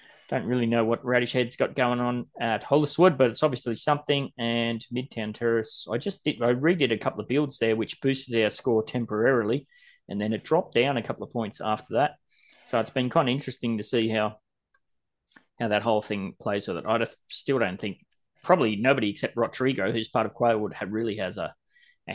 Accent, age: Australian, 20-39